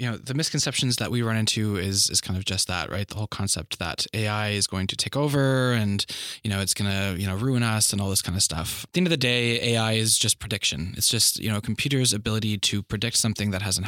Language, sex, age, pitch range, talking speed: English, male, 20-39, 100-125 Hz, 270 wpm